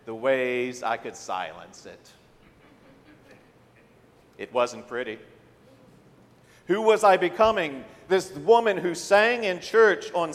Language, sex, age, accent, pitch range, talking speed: English, male, 50-69, American, 140-175 Hz, 115 wpm